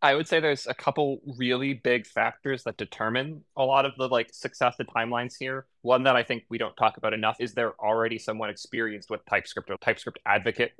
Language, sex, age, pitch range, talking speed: English, male, 20-39, 105-125 Hz, 215 wpm